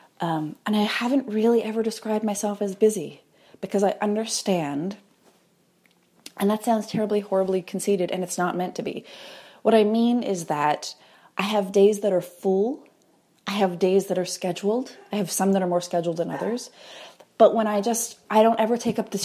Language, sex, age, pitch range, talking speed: English, female, 30-49, 170-210 Hz, 190 wpm